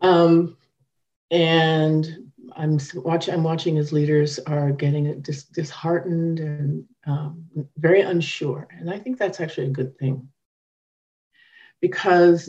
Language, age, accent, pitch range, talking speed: English, 50-69, American, 145-185 Hz, 110 wpm